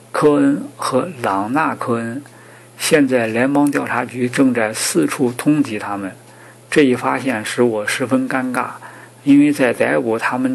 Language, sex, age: Chinese, male, 50-69